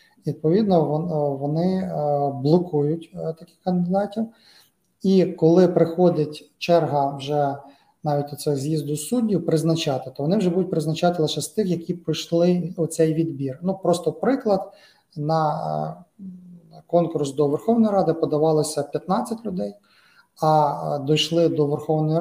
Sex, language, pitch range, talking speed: male, Ukrainian, 150-175 Hz, 115 wpm